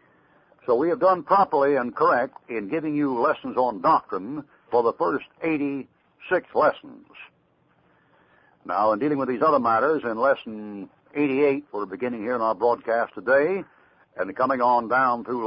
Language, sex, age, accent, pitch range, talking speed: English, male, 60-79, American, 130-150 Hz, 155 wpm